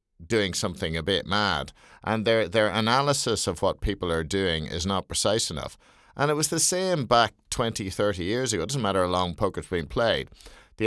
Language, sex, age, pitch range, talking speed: English, male, 50-69, 85-115 Hz, 205 wpm